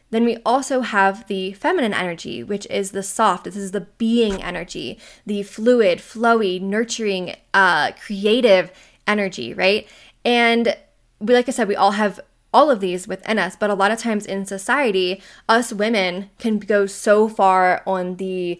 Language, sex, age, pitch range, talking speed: English, female, 10-29, 195-230 Hz, 165 wpm